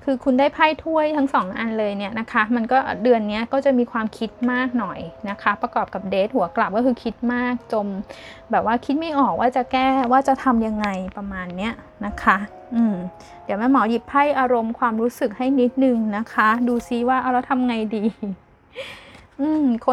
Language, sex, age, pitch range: Thai, female, 10-29, 215-255 Hz